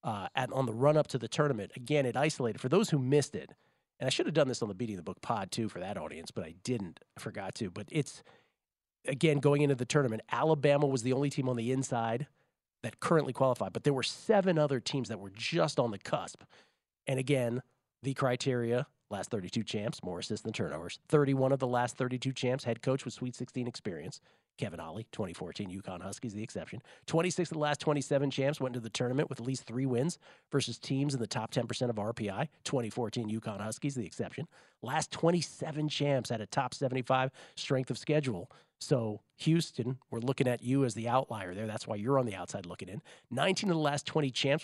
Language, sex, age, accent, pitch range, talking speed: English, male, 40-59, American, 115-145 Hz, 215 wpm